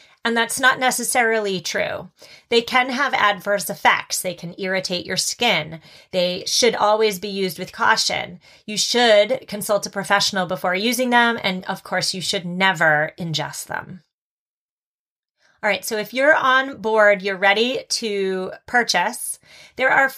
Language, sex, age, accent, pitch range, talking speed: English, female, 30-49, American, 195-255 Hz, 150 wpm